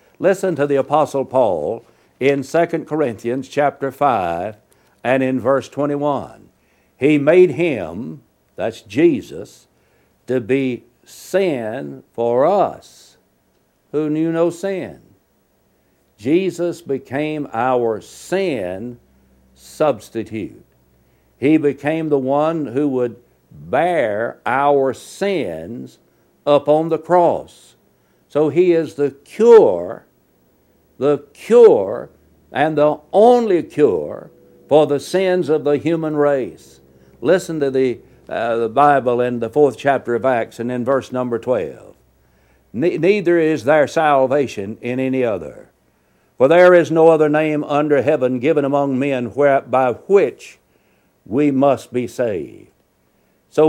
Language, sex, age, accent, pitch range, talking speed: English, male, 60-79, American, 125-160 Hz, 115 wpm